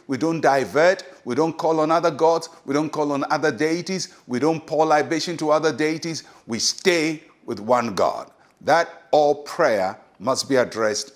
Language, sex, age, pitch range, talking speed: English, male, 60-79, 140-175 Hz, 175 wpm